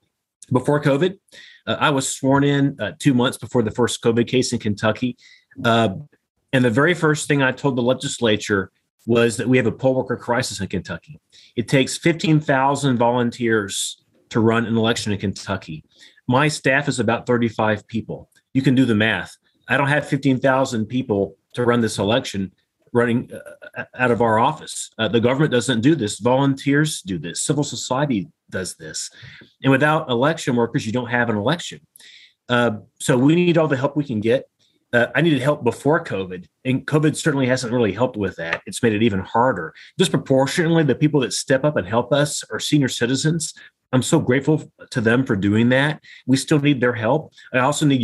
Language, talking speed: English, 190 wpm